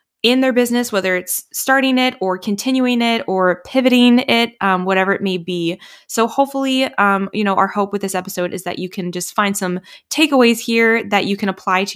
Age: 20-39